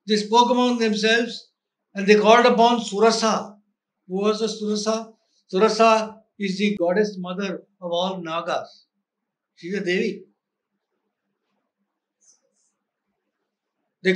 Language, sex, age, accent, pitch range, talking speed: English, male, 60-79, Indian, 205-240 Hz, 105 wpm